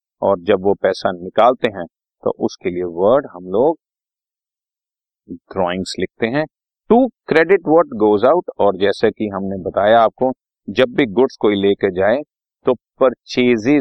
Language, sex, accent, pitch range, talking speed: Hindi, male, native, 105-150 Hz, 150 wpm